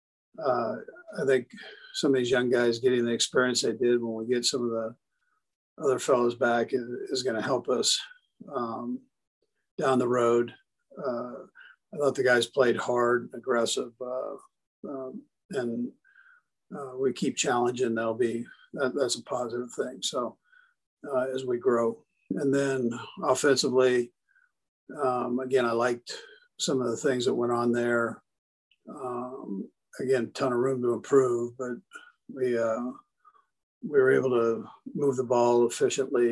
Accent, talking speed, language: American, 150 wpm, English